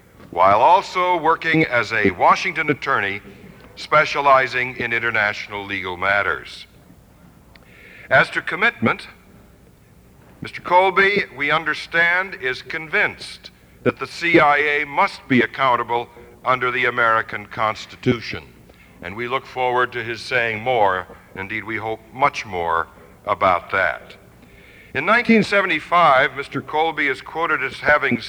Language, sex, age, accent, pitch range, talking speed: English, male, 60-79, American, 115-170 Hz, 115 wpm